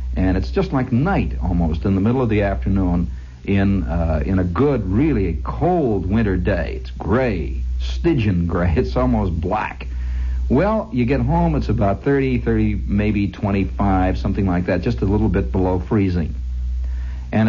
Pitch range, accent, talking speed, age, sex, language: 70-120 Hz, American, 165 wpm, 60-79, male, English